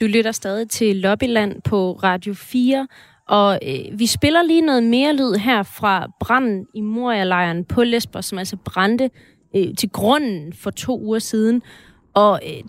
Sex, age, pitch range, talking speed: female, 30-49, 195-245 Hz, 165 wpm